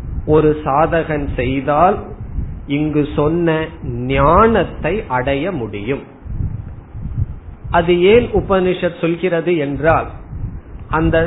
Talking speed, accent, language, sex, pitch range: 65 wpm, native, Tamil, male, 130-170 Hz